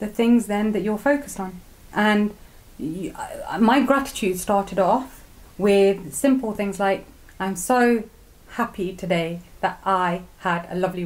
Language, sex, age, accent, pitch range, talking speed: English, female, 30-49, British, 175-205 Hz, 140 wpm